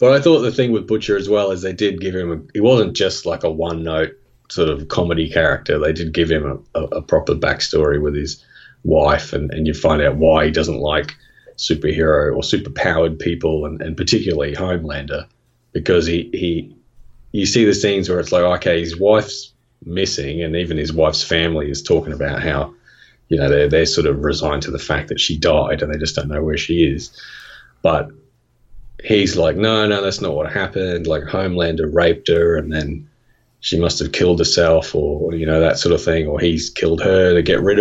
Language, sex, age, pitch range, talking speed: English, male, 30-49, 80-100 Hz, 205 wpm